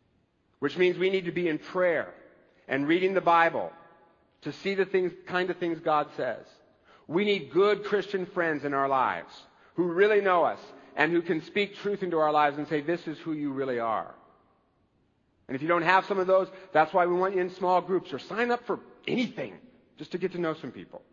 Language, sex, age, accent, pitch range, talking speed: English, male, 50-69, American, 150-210 Hz, 220 wpm